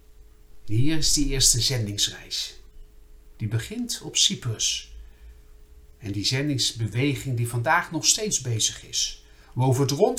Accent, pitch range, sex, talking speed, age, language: Dutch, 100-140 Hz, male, 130 wpm, 50-69, Dutch